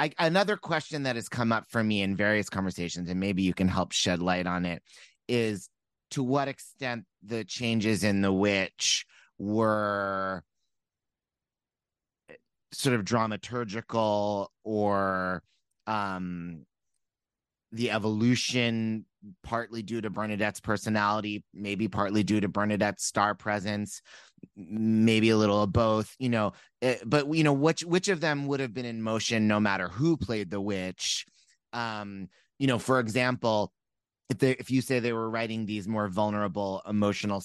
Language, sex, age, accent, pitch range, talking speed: English, male, 30-49, American, 100-120 Hz, 145 wpm